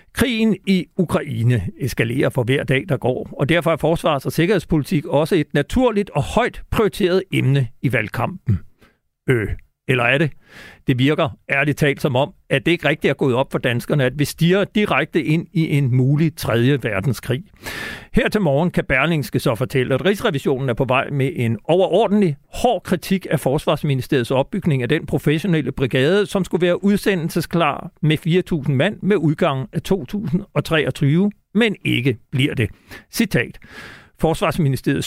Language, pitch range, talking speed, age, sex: Danish, 135-175 Hz, 160 wpm, 60-79, male